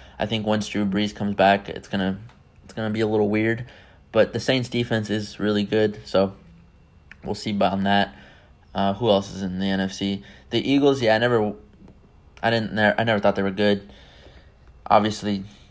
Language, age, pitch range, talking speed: English, 20-39, 100-110 Hz, 190 wpm